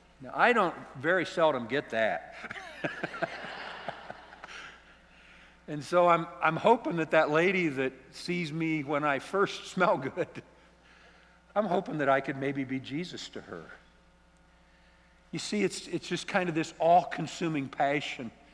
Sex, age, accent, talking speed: male, 60-79, American, 140 wpm